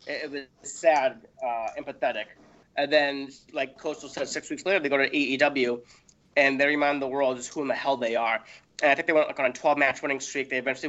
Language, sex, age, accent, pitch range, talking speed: English, male, 30-49, American, 140-220 Hz, 230 wpm